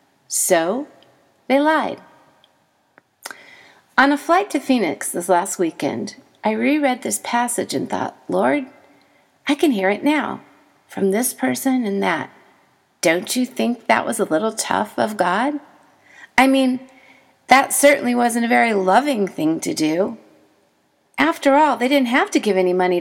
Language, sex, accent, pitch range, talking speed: English, female, American, 195-290 Hz, 150 wpm